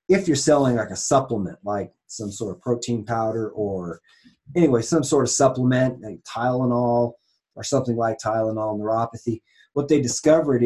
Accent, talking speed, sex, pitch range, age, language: American, 160 wpm, male, 115-145 Hz, 30-49, English